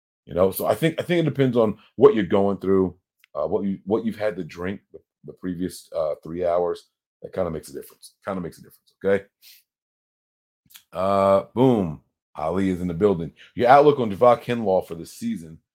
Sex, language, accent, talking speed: male, English, American, 210 wpm